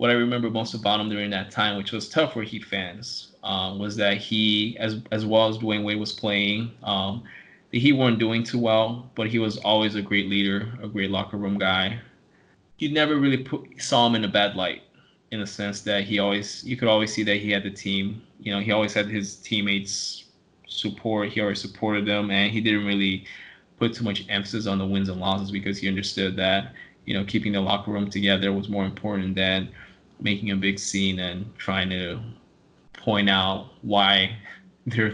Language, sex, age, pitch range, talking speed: English, male, 20-39, 100-110 Hz, 205 wpm